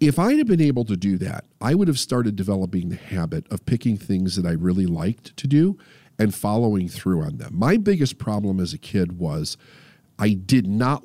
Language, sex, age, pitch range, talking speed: English, male, 40-59, 95-145 Hz, 210 wpm